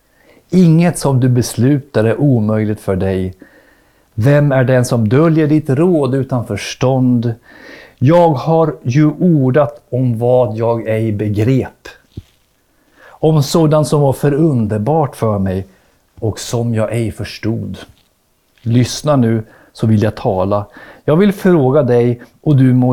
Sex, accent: male, native